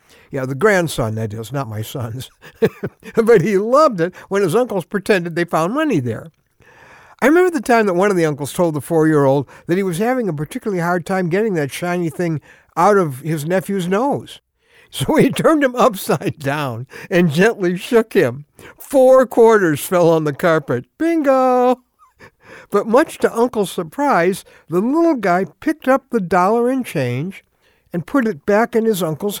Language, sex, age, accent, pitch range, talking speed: English, male, 60-79, American, 140-225 Hz, 180 wpm